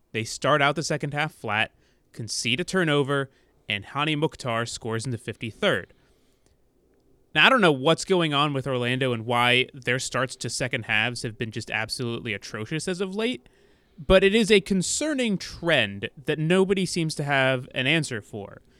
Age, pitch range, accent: 20-39, 120-155 Hz, American